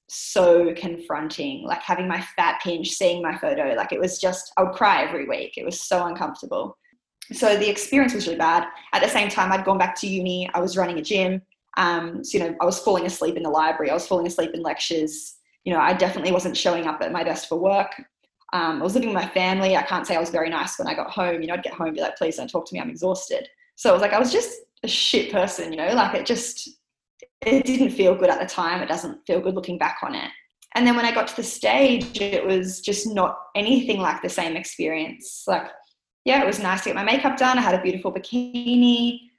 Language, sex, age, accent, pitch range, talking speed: English, female, 10-29, Australian, 175-240 Hz, 255 wpm